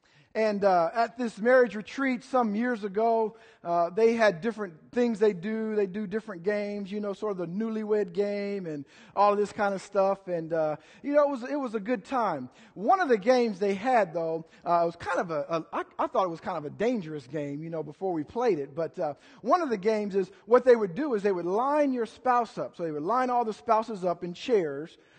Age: 50-69